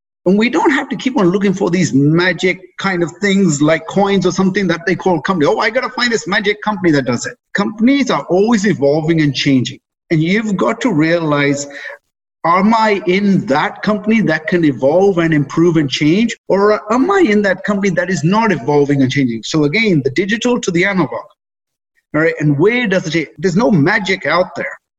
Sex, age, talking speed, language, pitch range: male, 50-69, 205 wpm, English, 160-215 Hz